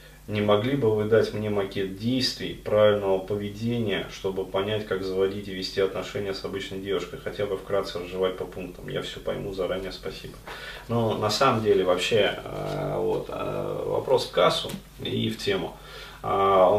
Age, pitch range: 30-49, 100-125 Hz